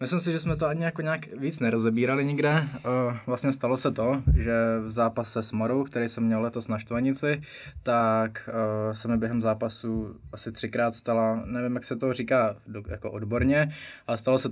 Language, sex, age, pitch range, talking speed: Czech, male, 20-39, 115-125 Hz, 180 wpm